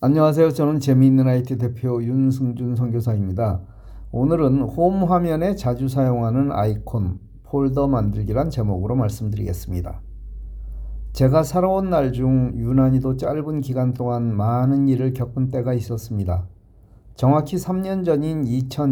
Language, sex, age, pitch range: Korean, male, 50-69, 110-140 Hz